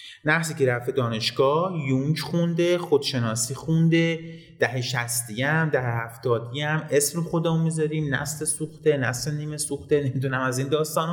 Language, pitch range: Persian, 135-170 Hz